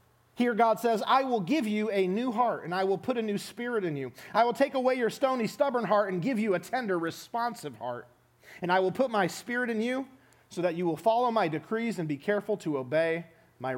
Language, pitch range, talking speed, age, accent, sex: English, 155-245 Hz, 240 wpm, 40-59, American, male